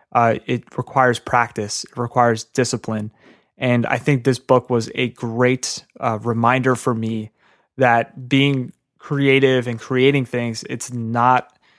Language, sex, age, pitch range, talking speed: English, male, 20-39, 120-135 Hz, 135 wpm